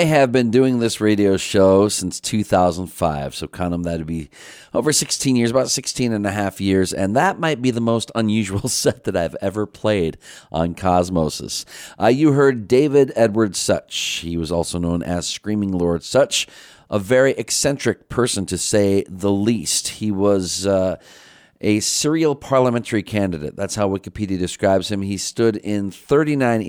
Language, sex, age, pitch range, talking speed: English, male, 40-59, 85-110 Hz, 170 wpm